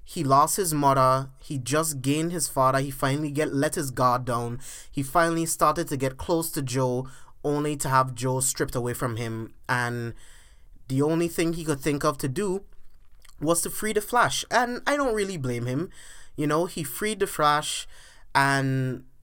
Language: English